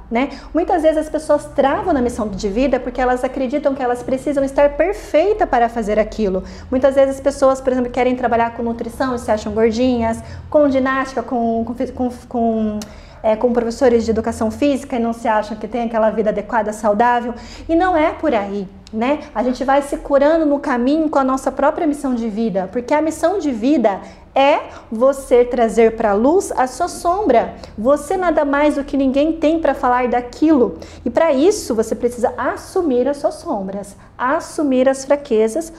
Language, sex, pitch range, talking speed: Portuguese, female, 235-290 Hz, 190 wpm